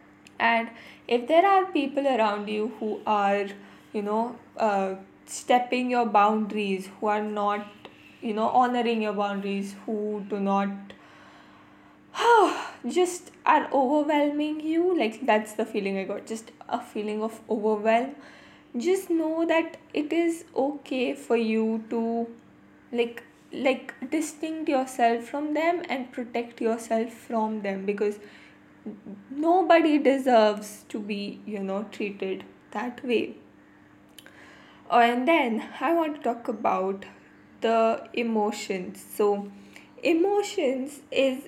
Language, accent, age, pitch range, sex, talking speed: English, Indian, 10-29, 210-275 Hz, female, 120 wpm